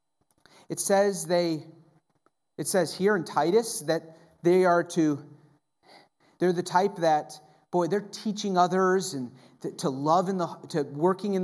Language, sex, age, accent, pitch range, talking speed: English, male, 40-59, American, 145-185 Hz, 150 wpm